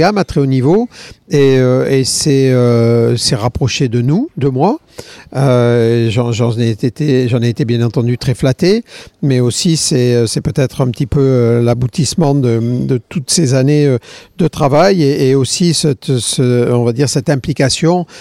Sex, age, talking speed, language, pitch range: male, 50-69, 175 wpm, French, 125-150 Hz